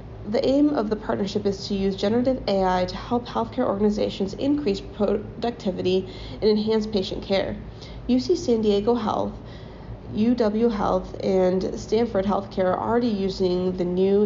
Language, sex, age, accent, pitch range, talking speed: English, female, 30-49, American, 190-235 Hz, 145 wpm